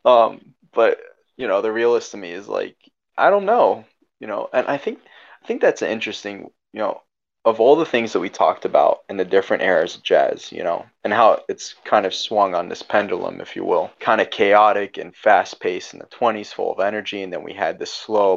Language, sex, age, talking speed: English, male, 20-39, 225 wpm